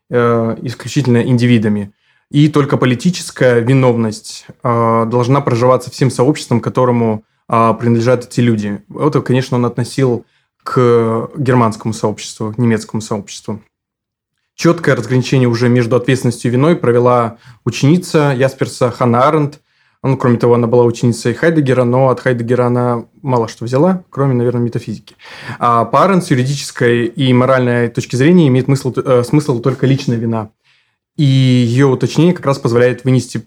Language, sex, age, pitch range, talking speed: Russian, male, 20-39, 120-135 Hz, 130 wpm